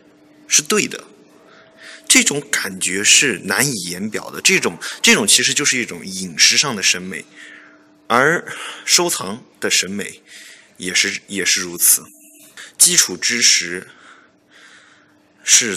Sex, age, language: male, 20-39, Chinese